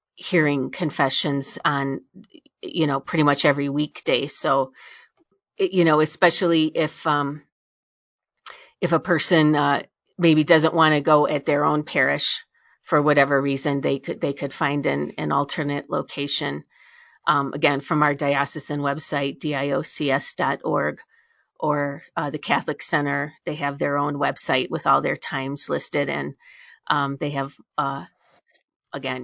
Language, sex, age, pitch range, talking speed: English, female, 40-59, 145-170 Hz, 140 wpm